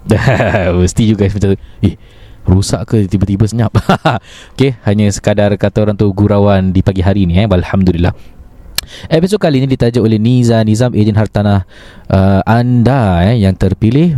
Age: 20-39